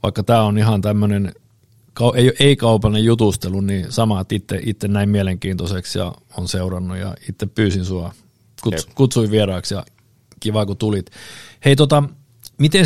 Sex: male